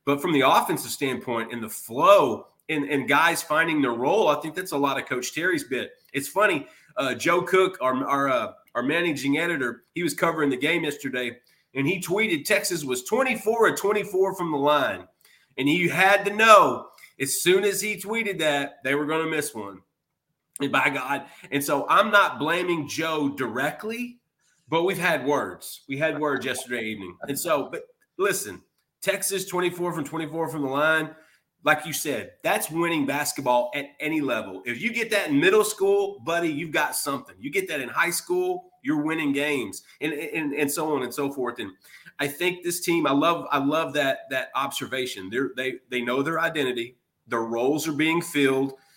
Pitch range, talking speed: 135-175 Hz, 190 wpm